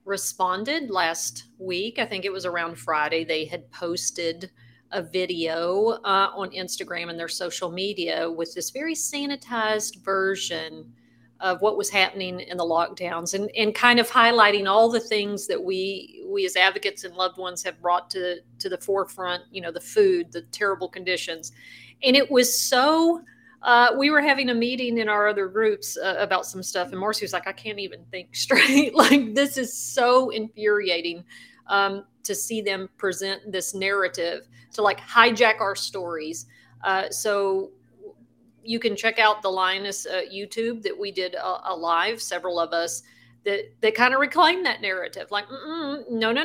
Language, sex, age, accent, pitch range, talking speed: English, female, 40-59, American, 180-235 Hz, 175 wpm